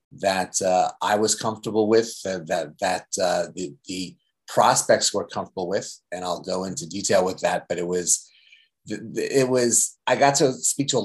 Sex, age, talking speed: male, 30-49, 185 wpm